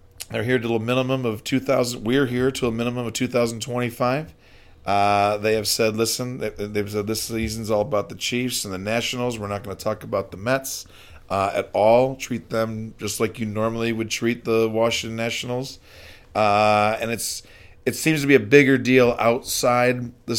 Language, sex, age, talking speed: English, male, 40-59, 190 wpm